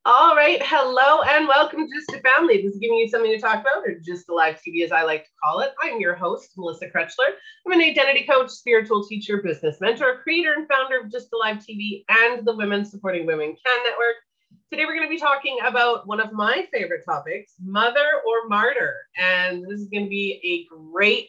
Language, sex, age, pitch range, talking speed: English, female, 30-49, 200-295 Hz, 225 wpm